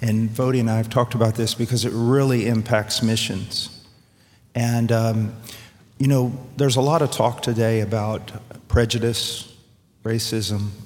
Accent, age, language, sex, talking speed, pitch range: American, 50-69, English, male, 145 wpm, 110-125 Hz